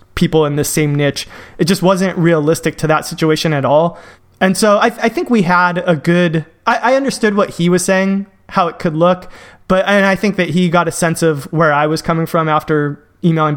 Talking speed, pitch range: 220 wpm, 155-190 Hz